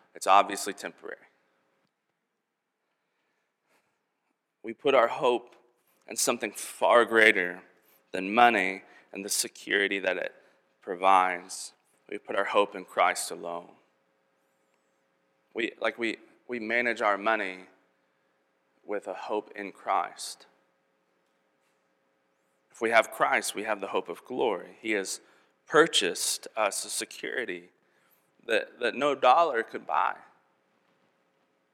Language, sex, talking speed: English, male, 115 wpm